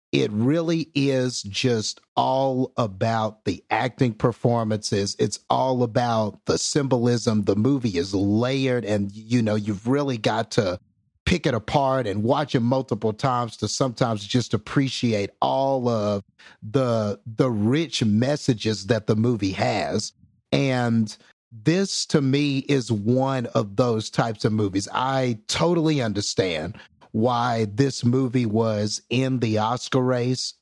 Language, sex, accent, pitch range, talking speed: English, male, American, 110-135 Hz, 135 wpm